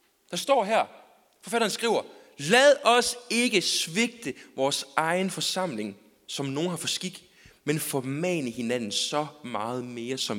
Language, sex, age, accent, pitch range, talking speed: Danish, male, 30-49, native, 160-255 Hz, 140 wpm